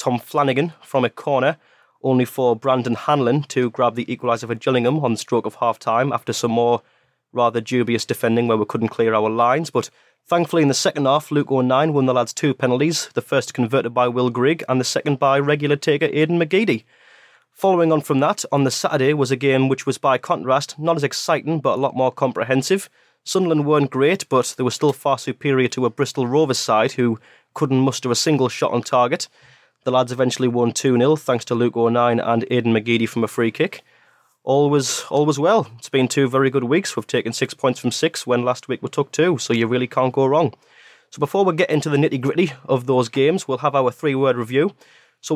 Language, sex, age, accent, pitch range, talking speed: English, male, 20-39, British, 125-150 Hz, 215 wpm